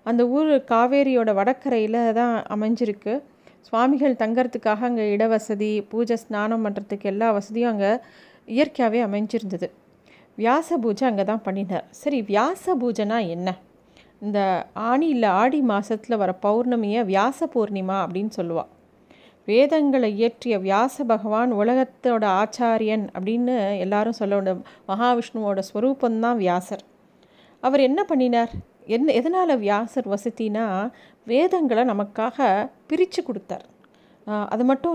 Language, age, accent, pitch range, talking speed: Tamil, 40-59, native, 210-260 Hz, 110 wpm